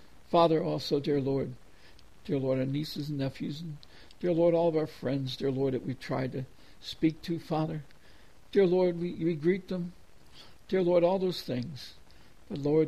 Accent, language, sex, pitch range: American, English, male, 130-165 Hz